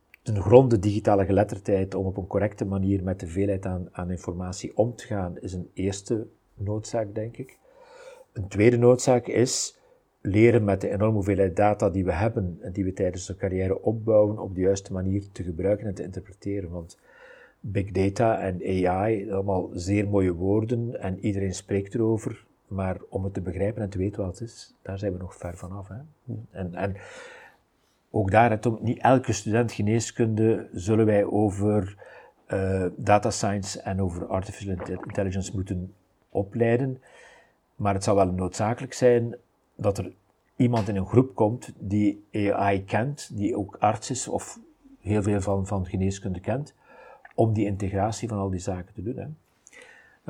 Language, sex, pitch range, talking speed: Dutch, male, 95-115 Hz, 170 wpm